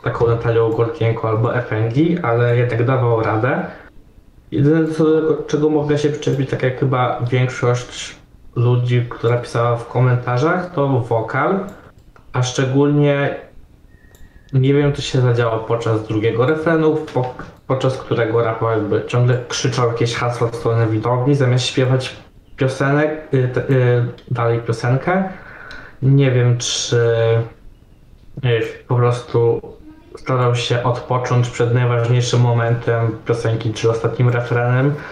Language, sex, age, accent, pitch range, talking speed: Polish, male, 20-39, native, 115-140 Hz, 120 wpm